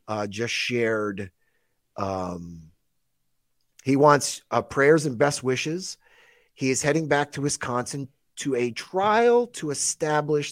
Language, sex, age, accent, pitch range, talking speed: English, male, 30-49, American, 110-145 Hz, 125 wpm